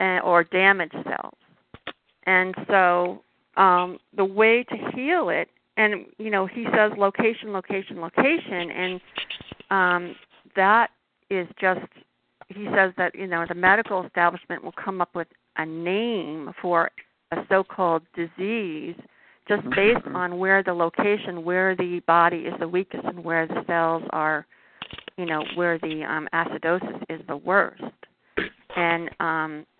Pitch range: 175-205 Hz